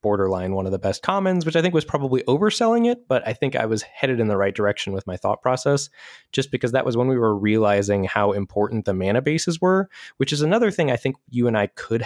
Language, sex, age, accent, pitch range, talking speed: English, male, 20-39, American, 100-135 Hz, 255 wpm